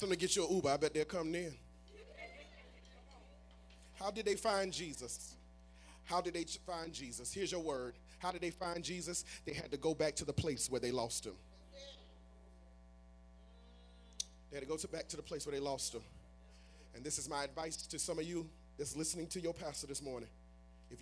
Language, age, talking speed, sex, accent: English, 30-49, 200 wpm, male, American